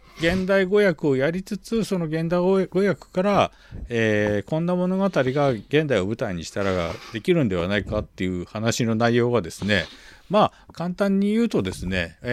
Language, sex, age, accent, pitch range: Japanese, male, 50-69, native, 95-150 Hz